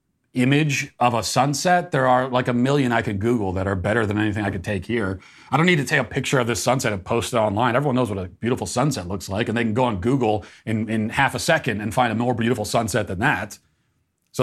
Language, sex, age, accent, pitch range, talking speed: English, male, 40-59, American, 100-125 Hz, 260 wpm